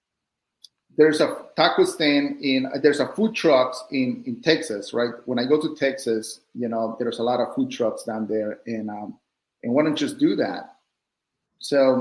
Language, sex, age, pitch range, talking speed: English, male, 40-59, 125-160 Hz, 190 wpm